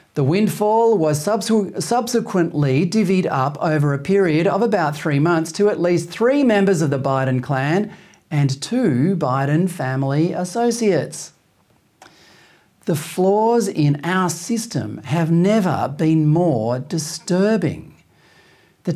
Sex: male